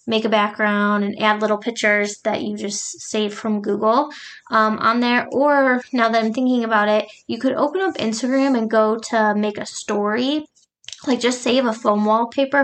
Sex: female